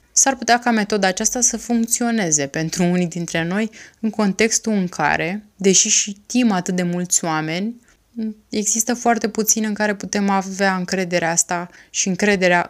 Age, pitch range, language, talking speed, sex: 20-39, 170-205 Hz, Romanian, 155 wpm, female